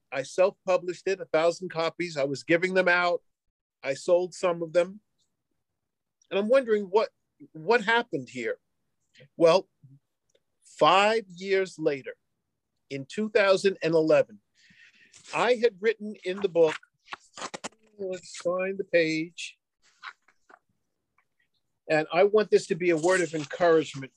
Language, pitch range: English, 165-215 Hz